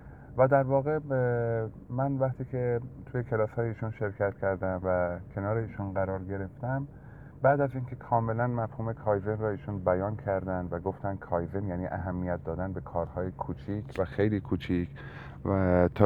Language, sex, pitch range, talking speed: Persian, male, 90-115 Hz, 155 wpm